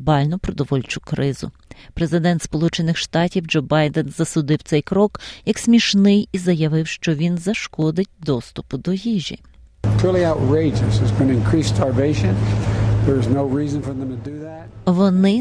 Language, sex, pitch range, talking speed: Ukrainian, female, 145-185 Hz, 85 wpm